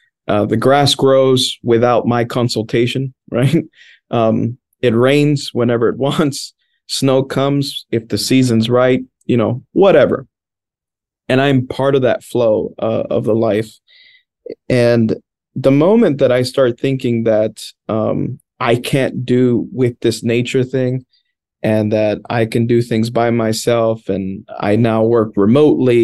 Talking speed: 145 wpm